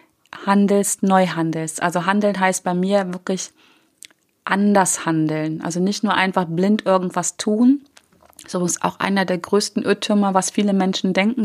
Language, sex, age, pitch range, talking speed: German, female, 30-49, 170-205 Hz, 150 wpm